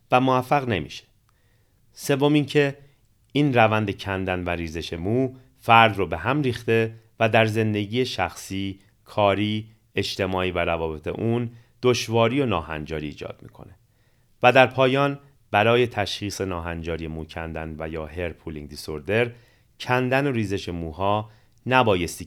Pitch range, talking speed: 90-120 Hz, 125 wpm